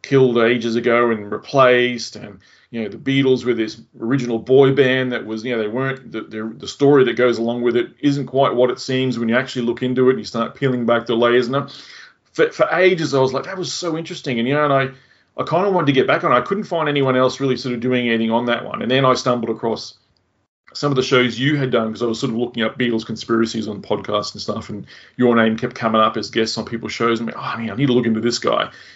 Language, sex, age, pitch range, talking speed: English, male, 30-49, 115-135 Hz, 265 wpm